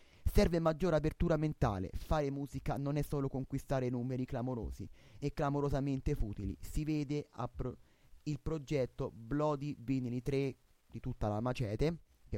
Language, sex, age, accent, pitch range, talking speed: Italian, male, 30-49, native, 125-155 Hz, 130 wpm